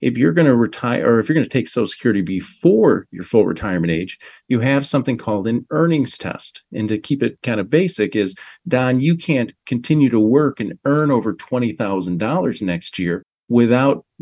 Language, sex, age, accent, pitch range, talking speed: English, male, 40-59, American, 105-135 Hz, 195 wpm